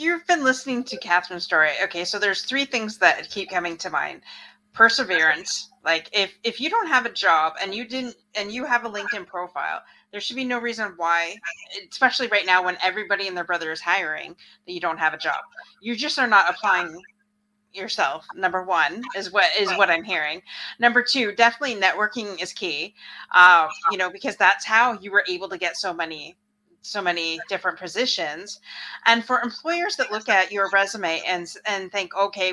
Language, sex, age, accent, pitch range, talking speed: English, female, 30-49, American, 180-235 Hz, 195 wpm